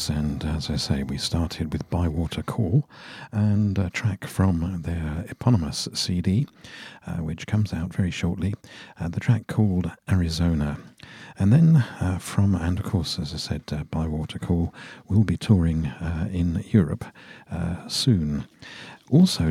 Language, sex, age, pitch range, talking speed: English, male, 50-69, 80-105 Hz, 150 wpm